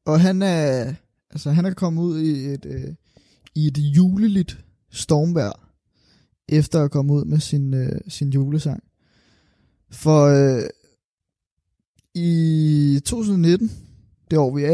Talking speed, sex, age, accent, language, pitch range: 115 wpm, male, 20-39, native, Danish, 140-175 Hz